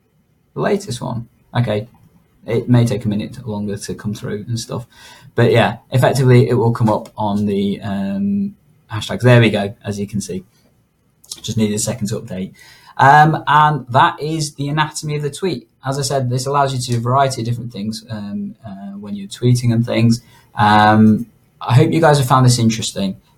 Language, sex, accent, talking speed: English, male, British, 200 wpm